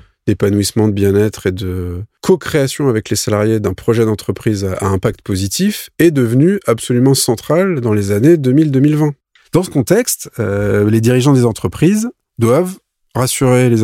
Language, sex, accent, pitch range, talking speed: French, male, French, 105-145 Hz, 145 wpm